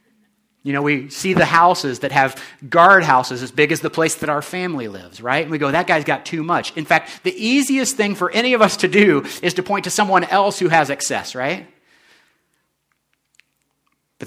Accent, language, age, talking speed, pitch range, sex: American, English, 40-59, 210 wpm, 135-185 Hz, male